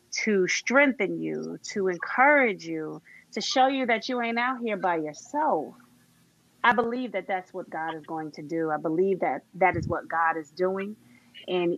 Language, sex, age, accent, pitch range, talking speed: English, female, 30-49, American, 165-245 Hz, 185 wpm